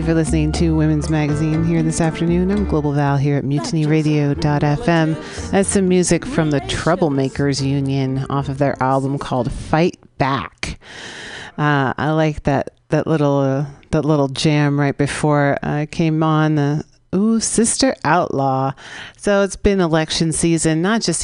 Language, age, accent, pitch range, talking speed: English, 40-59, American, 140-165 Hz, 165 wpm